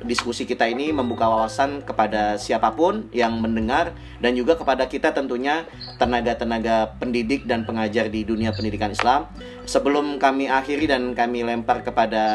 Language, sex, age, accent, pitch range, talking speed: Indonesian, male, 30-49, native, 110-125 Hz, 140 wpm